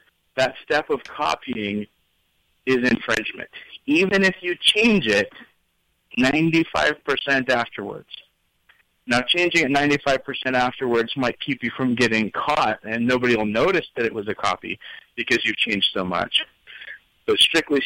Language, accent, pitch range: English, American, 115-140 Hz